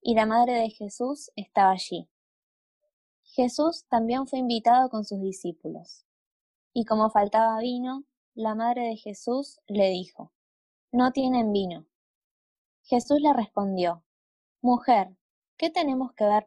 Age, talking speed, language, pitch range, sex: 20-39, 130 wpm, Spanish, 200-255 Hz, female